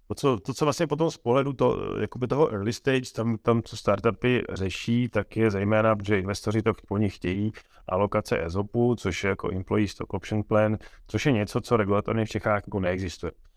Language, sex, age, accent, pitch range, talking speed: Czech, male, 30-49, native, 100-110 Hz, 190 wpm